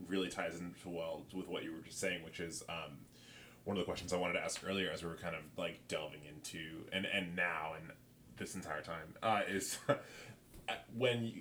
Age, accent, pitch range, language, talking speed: 20-39, American, 80-95 Hz, English, 210 wpm